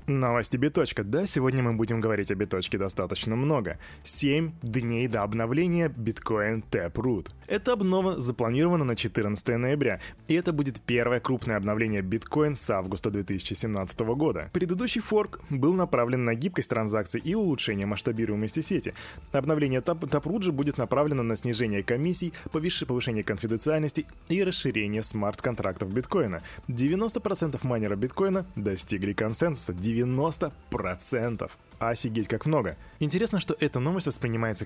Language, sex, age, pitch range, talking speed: Russian, male, 20-39, 110-150 Hz, 125 wpm